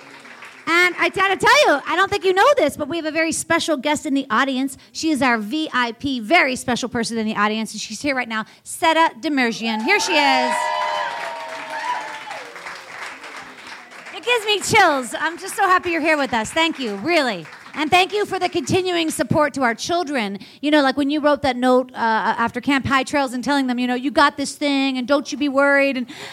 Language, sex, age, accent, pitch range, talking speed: English, female, 40-59, American, 245-325 Hz, 210 wpm